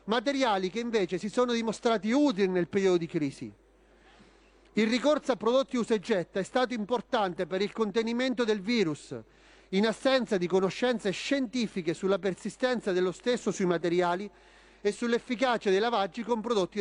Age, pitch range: 40-59, 185-245 Hz